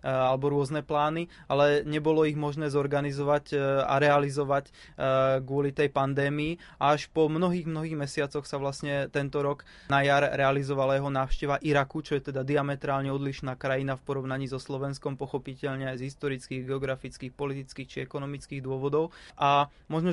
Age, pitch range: 20-39, 135-150 Hz